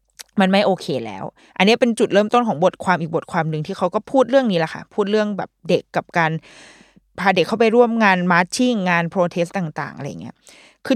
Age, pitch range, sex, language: 20-39, 170-230 Hz, female, Thai